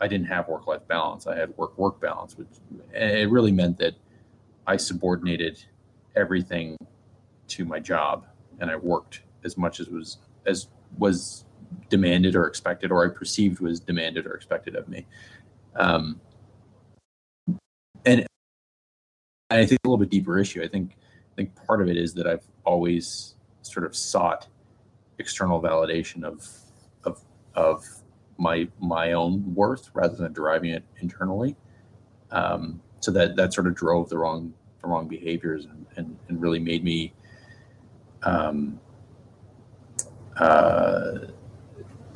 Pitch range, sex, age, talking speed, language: 85-115 Hz, male, 30-49, 140 wpm, English